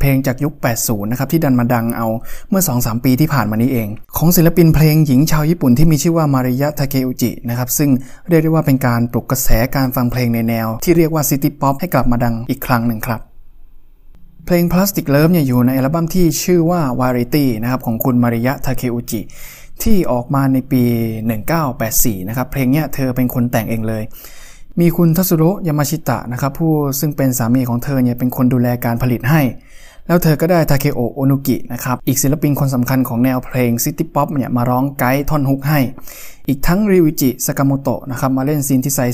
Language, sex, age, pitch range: Thai, male, 20-39, 125-150 Hz